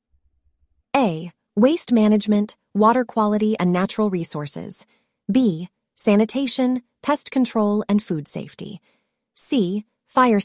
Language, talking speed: English, 100 wpm